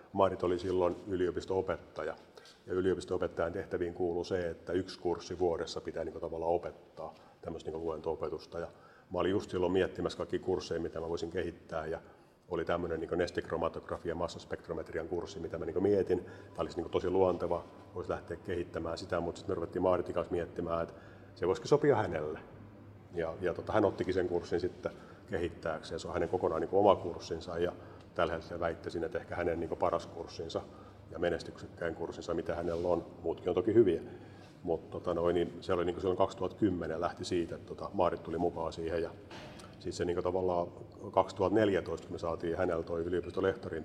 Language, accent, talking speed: Finnish, native, 165 wpm